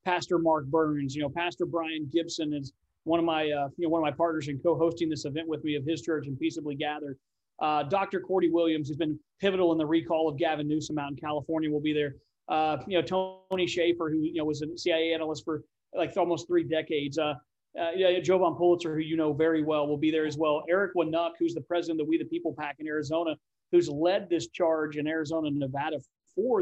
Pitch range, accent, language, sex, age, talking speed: 155-185 Hz, American, English, male, 40-59, 235 wpm